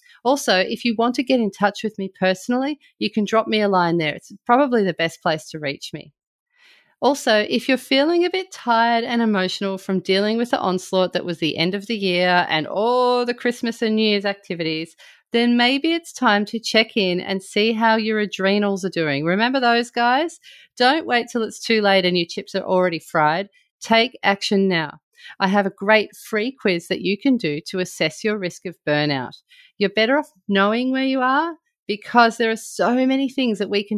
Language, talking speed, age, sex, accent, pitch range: English, 210 wpm, 30-49, female, Australian, 180-240 Hz